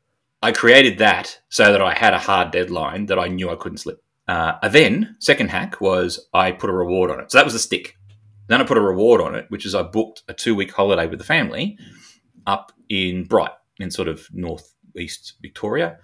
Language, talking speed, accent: English, 215 wpm, Australian